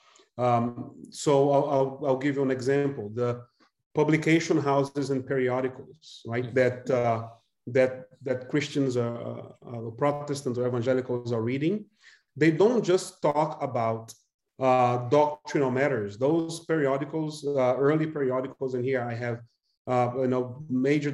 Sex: male